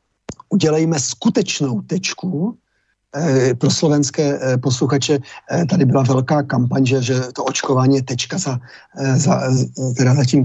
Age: 40-59